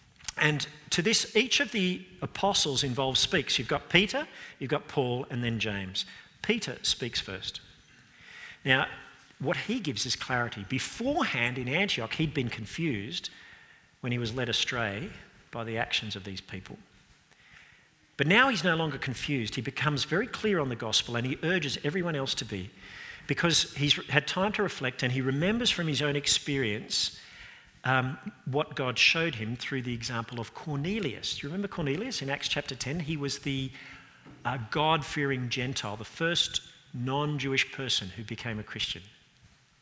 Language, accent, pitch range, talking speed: English, Australian, 110-150 Hz, 165 wpm